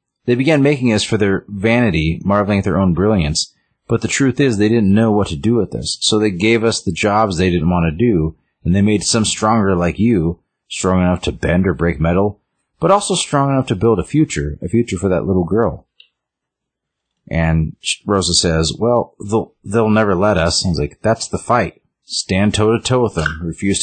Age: 30-49